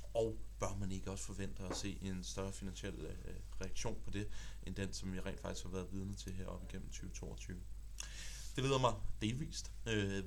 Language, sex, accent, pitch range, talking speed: Danish, male, native, 95-115 Hz, 195 wpm